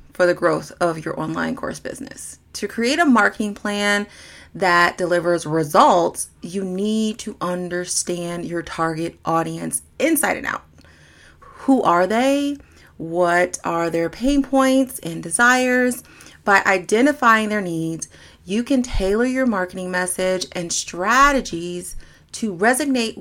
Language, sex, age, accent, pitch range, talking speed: English, female, 30-49, American, 180-245 Hz, 130 wpm